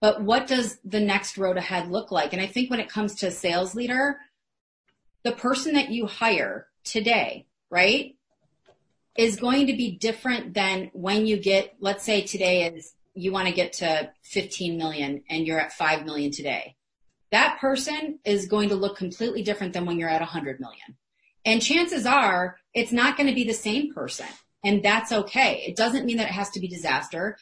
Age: 30-49